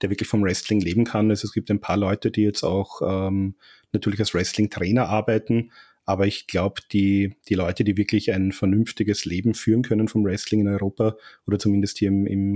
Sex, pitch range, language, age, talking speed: male, 105-125 Hz, German, 30-49, 200 wpm